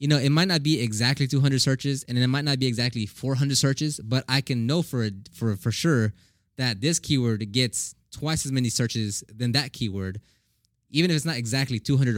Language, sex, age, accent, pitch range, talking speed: English, male, 20-39, American, 110-140 Hz, 205 wpm